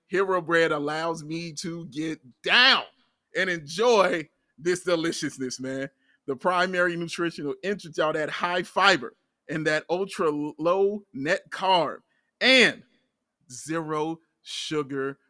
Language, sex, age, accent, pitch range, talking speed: English, male, 30-49, American, 145-190 Hz, 115 wpm